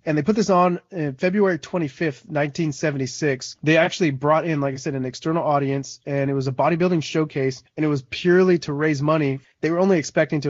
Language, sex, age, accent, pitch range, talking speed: English, male, 30-49, American, 130-170 Hz, 210 wpm